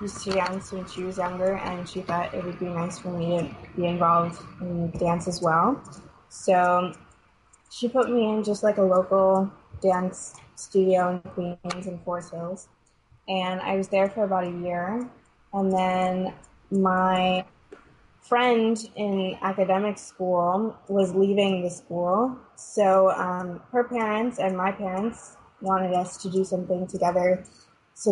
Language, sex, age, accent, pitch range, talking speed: English, female, 20-39, American, 180-200 Hz, 150 wpm